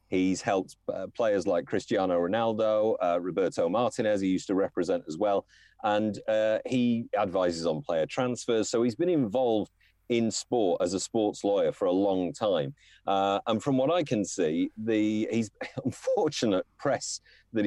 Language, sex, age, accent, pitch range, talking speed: English, male, 30-49, British, 95-115 Hz, 165 wpm